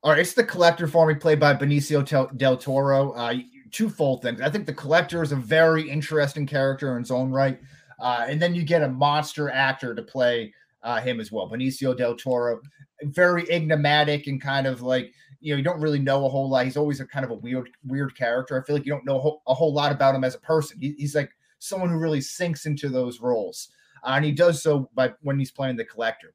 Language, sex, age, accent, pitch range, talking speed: English, male, 30-49, American, 130-150 Hz, 235 wpm